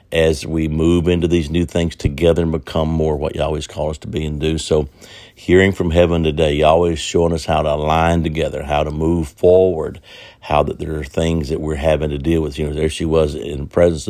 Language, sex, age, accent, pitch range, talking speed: English, male, 60-79, American, 75-85 Hz, 240 wpm